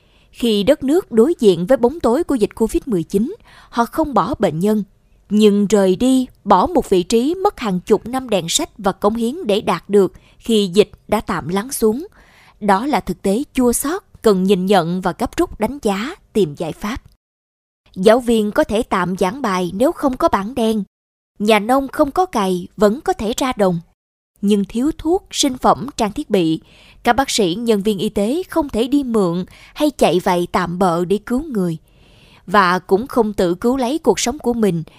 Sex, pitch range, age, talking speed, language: female, 195-260 Hz, 20-39, 200 wpm, Vietnamese